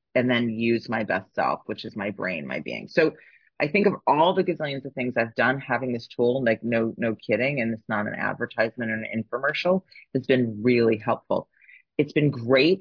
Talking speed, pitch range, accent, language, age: 210 wpm, 115-140 Hz, American, English, 30-49